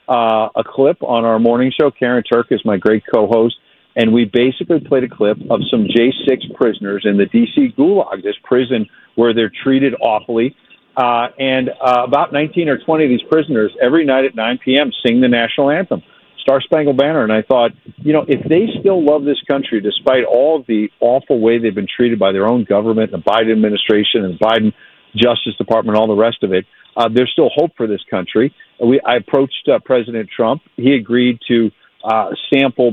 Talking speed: 195 wpm